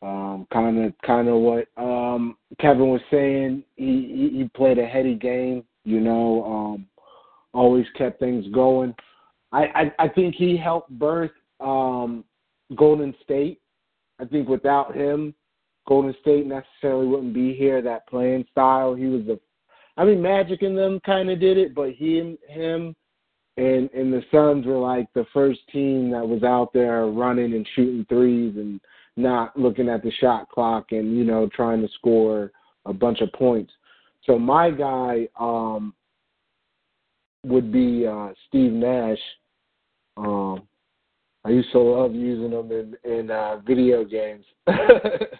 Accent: American